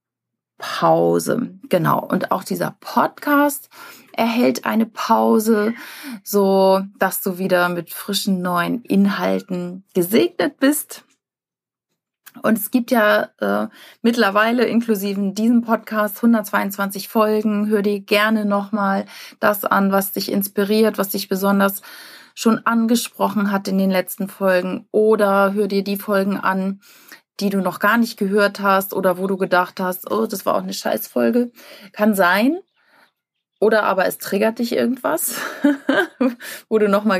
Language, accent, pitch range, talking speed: German, German, 195-235 Hz, 140 wpm